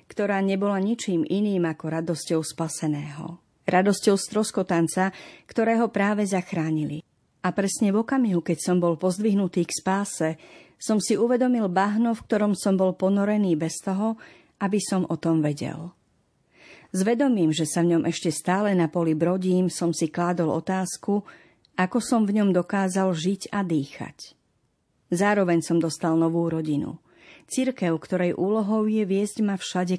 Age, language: 40-59, Slovak